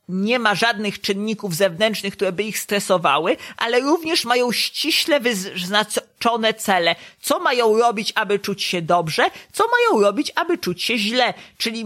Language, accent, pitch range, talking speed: Polish, native, 195-250 Hz, 150 wpm